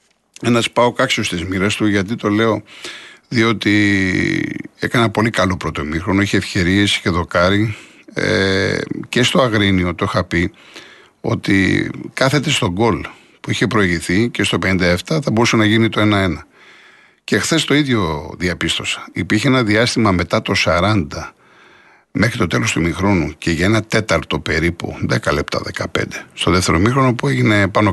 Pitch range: 90-115 Hz